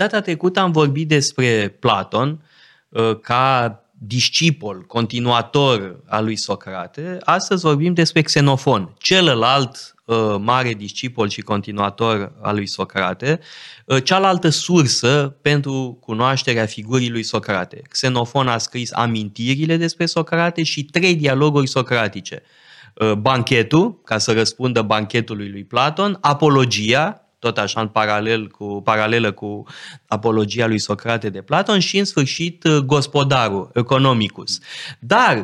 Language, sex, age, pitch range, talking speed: Romanian, male, 20-39, 115-155 Hz, 115 wpm